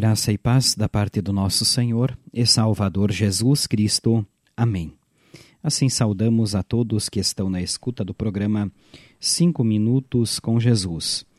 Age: 40-59